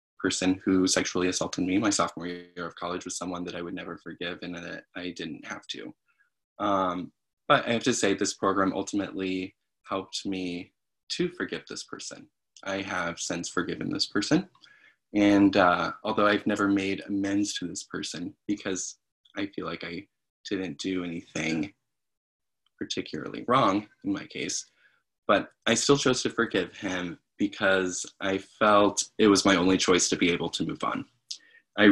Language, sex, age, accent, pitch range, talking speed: English, male, 20-39, American, 90-105 Hz, 165 wpm